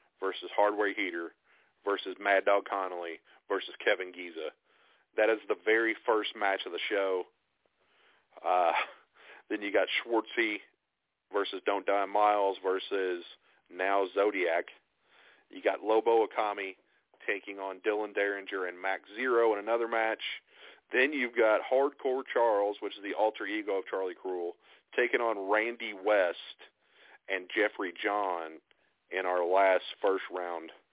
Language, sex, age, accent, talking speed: English, male, 40-59, American, 135 wpm